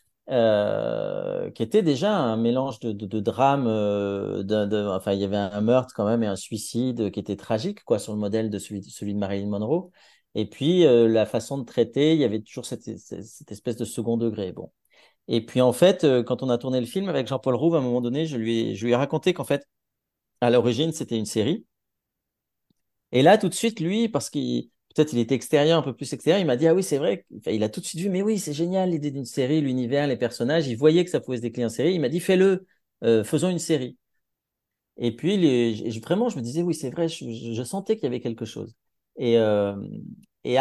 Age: 40-59